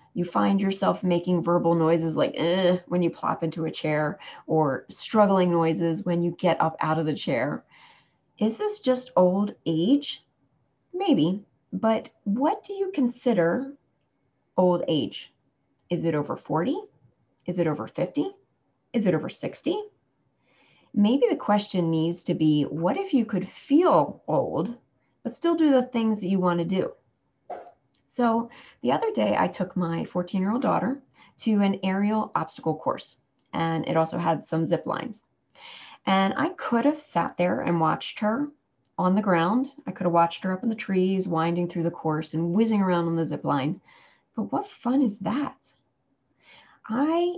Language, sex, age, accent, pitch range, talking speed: English, female, 30-49, American, 170-240 Hz, 165 wpm